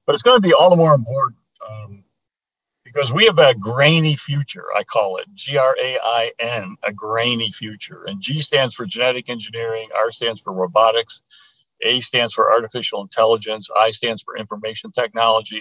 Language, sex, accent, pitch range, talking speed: English, male, American, 110-150 Hz, 165 wpm